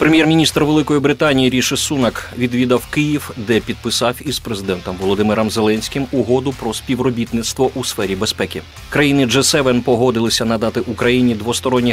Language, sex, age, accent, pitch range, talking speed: Ukrainian, male, 30-49, native, 105-130 Hz, 125 wpm